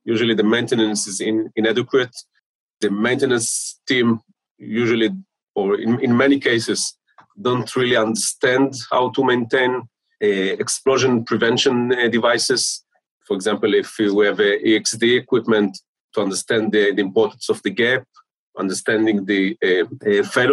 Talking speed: 135 wpm